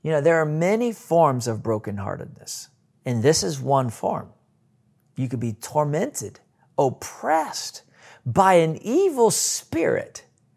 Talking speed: 125 wpm